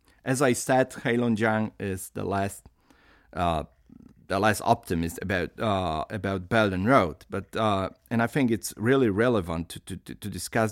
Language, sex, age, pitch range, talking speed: Polish, male, 40-59, 100-125 Hz, 160 wpm